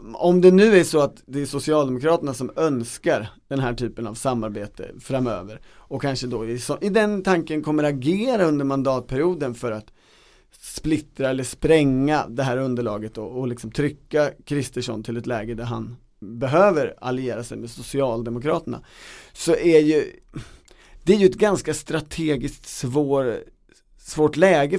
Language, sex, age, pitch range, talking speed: Swedish, male, 30-49, 120-155 Hz, 155 wpm